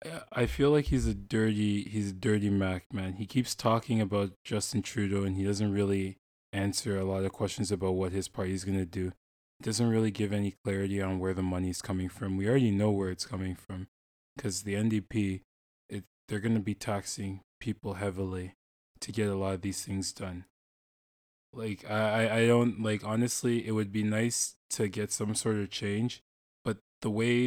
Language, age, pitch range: English, 20-39, 95-115 Hz